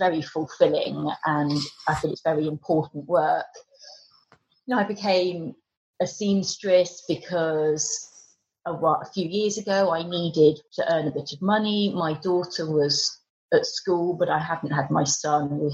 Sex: female